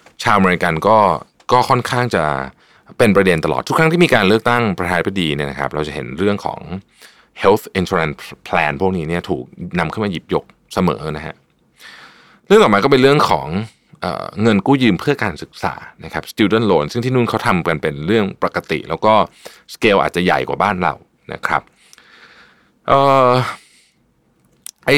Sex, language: male, Thai